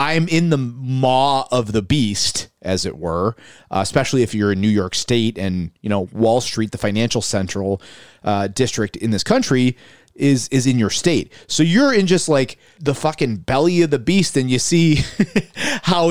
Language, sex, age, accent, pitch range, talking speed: English, male, 30-49, American, 115-165 Hz, 190 wpm